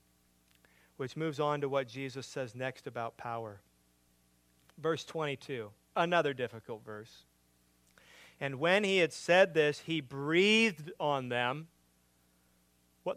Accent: American